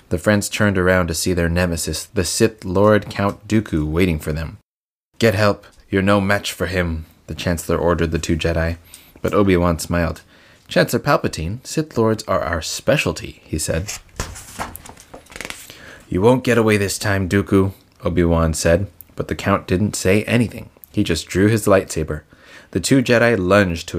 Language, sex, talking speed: English, male, 165 wpm